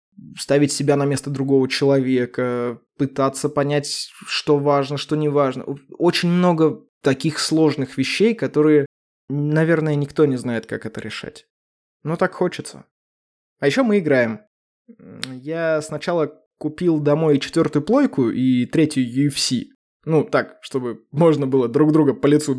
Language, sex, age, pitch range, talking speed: Russian, male, 20-39, 135-175 Hz, 135 wpm